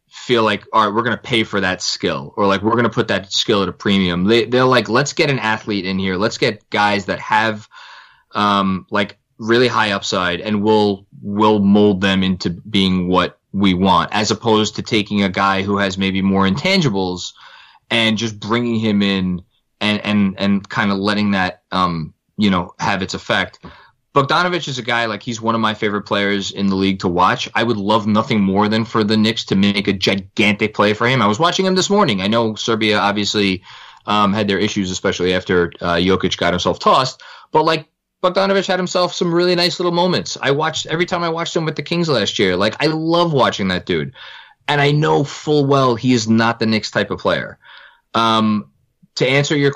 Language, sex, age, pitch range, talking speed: English, male, 20-39, 100-125 Hz, 215 wpm